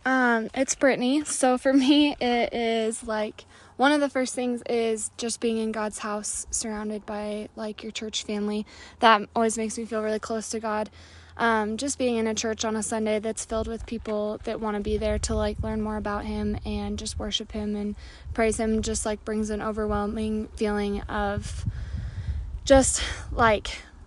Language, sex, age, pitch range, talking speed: English, female, 20-39, 210-225 Hz, 185 wpm